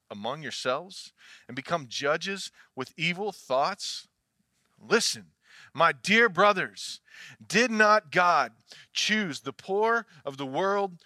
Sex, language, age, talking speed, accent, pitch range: male, English, 40-59, 115 wpm, American, 150-210 Hz